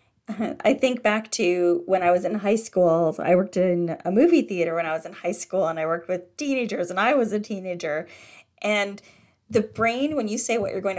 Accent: American